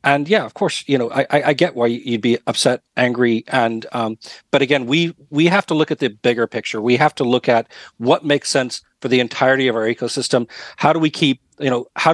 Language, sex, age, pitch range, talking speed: English, male, 40-59, 125-150 Hz, 235 wpm